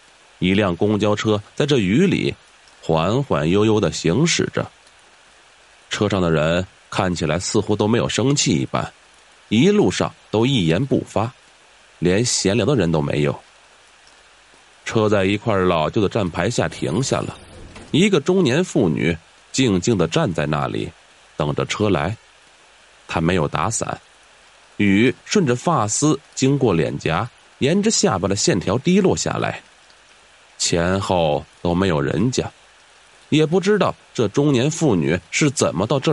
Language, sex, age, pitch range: Chinese, male, 30-49, 90-130 Hz